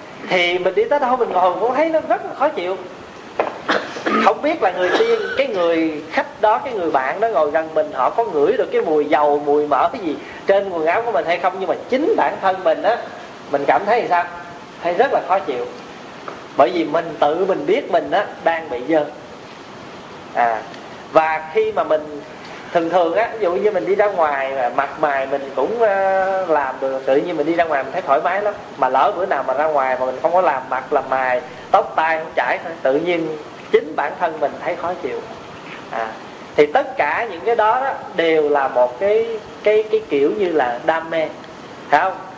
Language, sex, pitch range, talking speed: Vietnamese, male, 150-220 Hz, 220 wpm